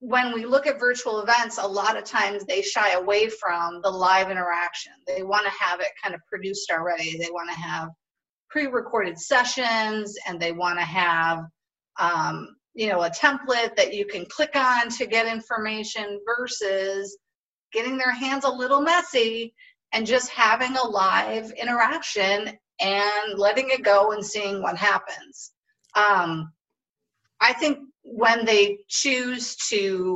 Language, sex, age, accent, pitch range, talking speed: English, female, 40-59, American, 185-240 Hz, 155 wpm